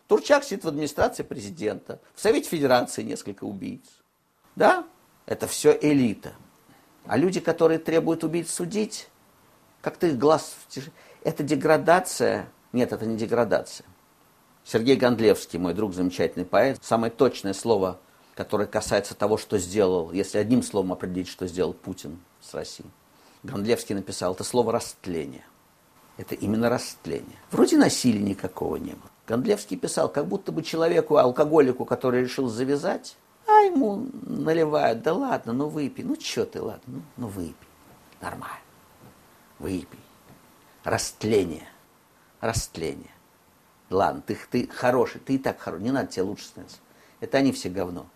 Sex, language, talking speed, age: male, Russian, 140 wpm, 50-69